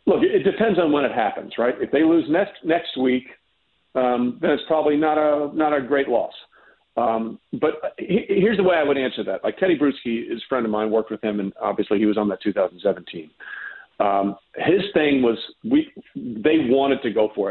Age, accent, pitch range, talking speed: 50-69, American, 115-155 Hz, 210 wpm